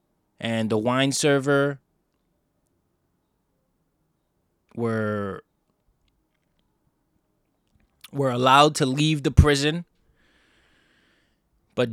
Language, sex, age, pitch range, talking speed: English, male, 20-39, 120-150 Hz, 60 wpm